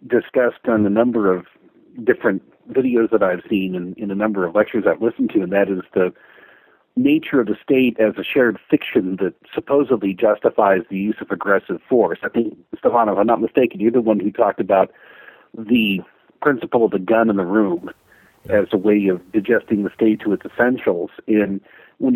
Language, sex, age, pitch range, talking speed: English, male, 50-69, 100-135 Hz, 195 wpm